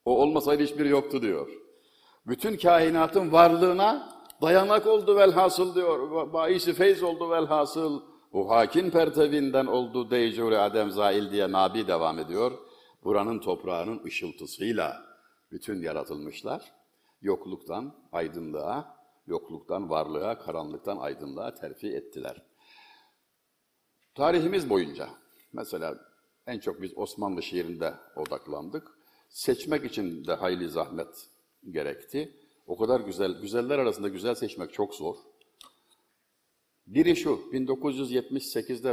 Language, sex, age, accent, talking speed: Turkish, male, 60-79, native, 105 wpm